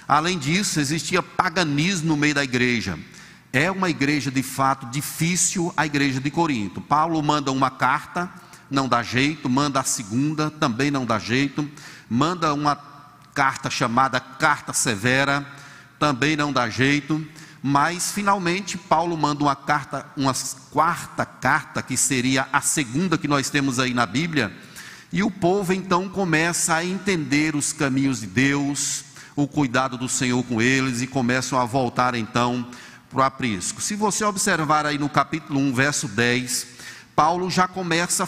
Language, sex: Portuguese, male